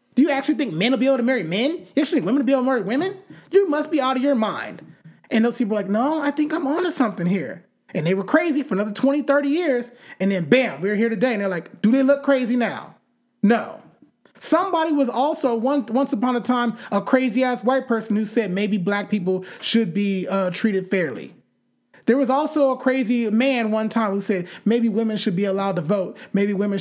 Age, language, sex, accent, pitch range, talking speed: 30-49, English, male, American, 200-260 Hz, 235 wpm